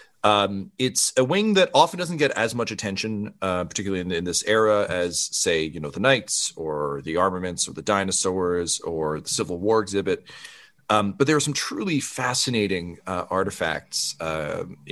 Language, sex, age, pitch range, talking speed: English, male, 30-49, 90-120 Hz, 175 wpm